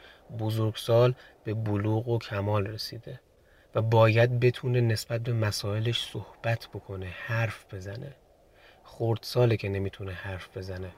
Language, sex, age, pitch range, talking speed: Persian, male, 30-49, 100-125 Hz, 115 wpm